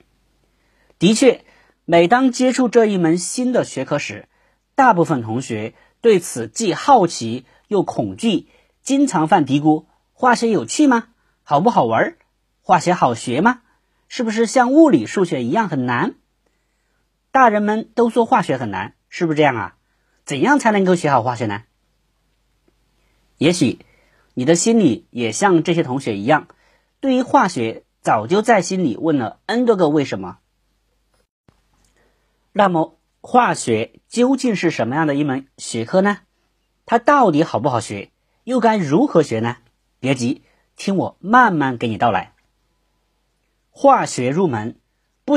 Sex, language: male, Chinese